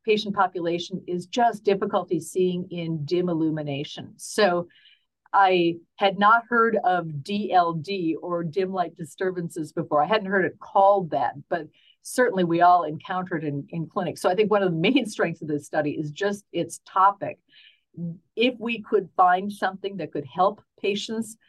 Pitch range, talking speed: 170-200 Hz, 165 wpm